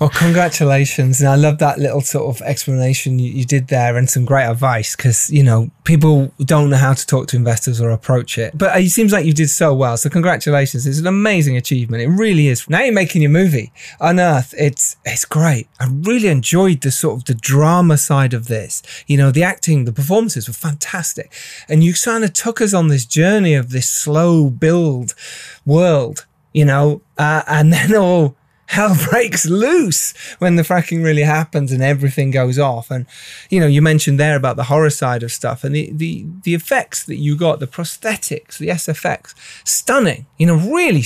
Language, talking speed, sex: English, 205 wpm, male